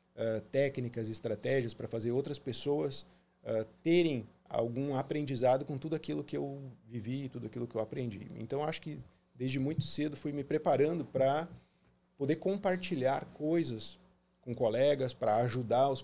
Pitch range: 110-140 Hz